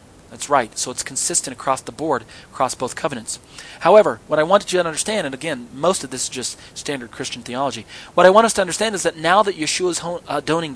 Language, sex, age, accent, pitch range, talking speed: English, male, 40-59, American, 125-160 Hz, 225 wpm